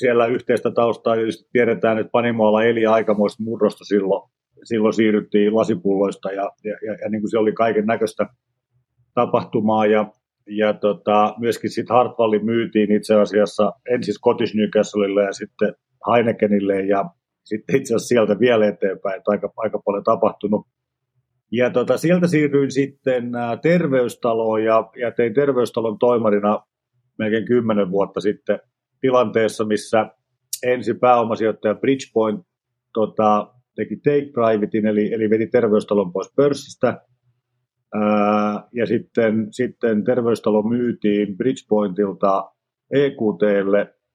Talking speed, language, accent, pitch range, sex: 115 wpm, Finnish, native, 105-125 Hz, male